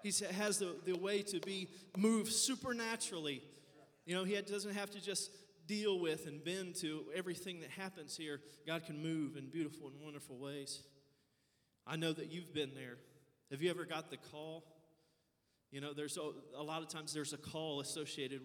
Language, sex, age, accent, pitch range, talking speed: English, male, 30-49, American, 145-175 Hz, 190 wpm